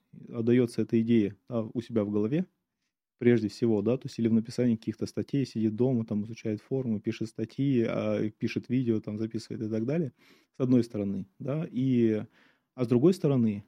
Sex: male